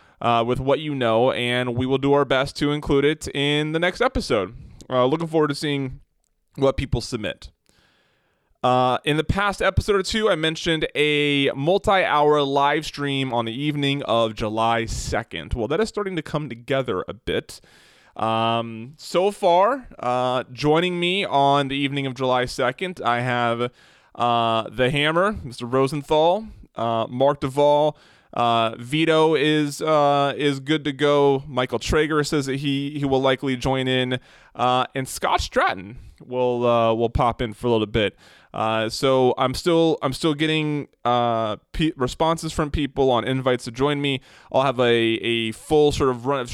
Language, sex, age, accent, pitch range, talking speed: English, male, 20-39, American, 120-150 Hz, 170 wpm